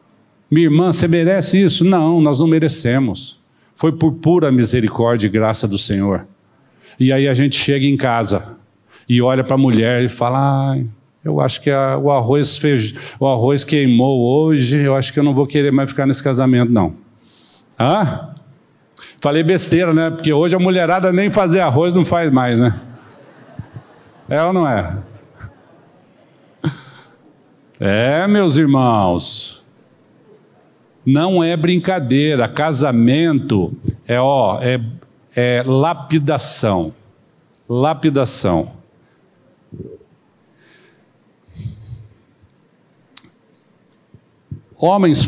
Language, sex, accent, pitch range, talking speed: Portuguese, male, Brazilian, 120-160 Hz, 110 wpm